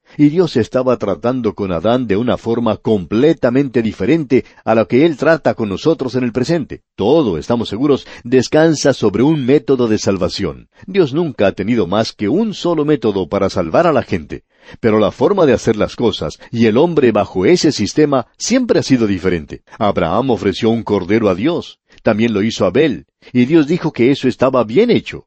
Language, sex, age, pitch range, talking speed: Spanish, male, 50-69, 105-135 Hz, 190 wpm